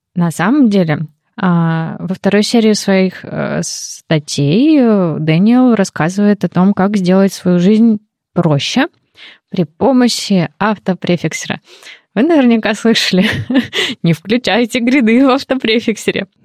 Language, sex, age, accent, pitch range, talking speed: Russian, female, 20-39, native, 170-215 Hz, 100 wpm